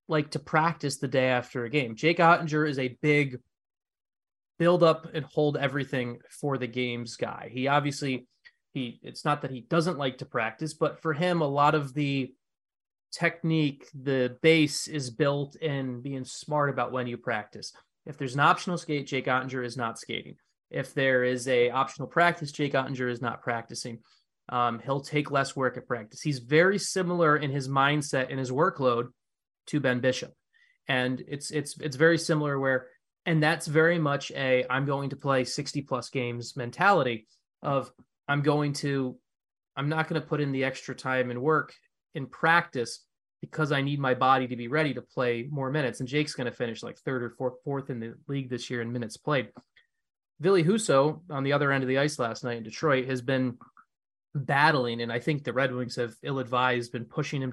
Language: English